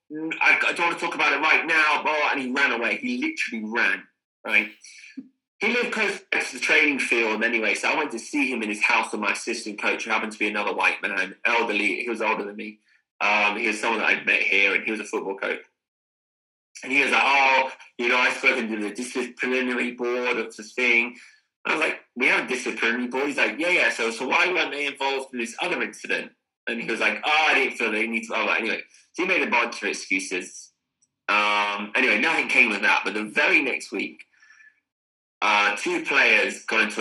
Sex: male